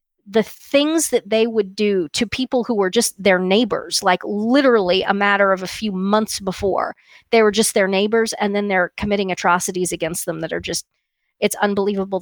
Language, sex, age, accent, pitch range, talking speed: English, female, 40-59, American, 190-230 Hz, 190 wpm